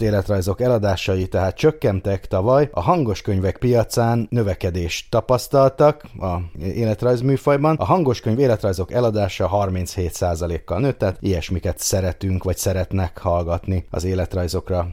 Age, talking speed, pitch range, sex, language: 30-49, 110 wpm, 95-120 Hz, male, Hungarian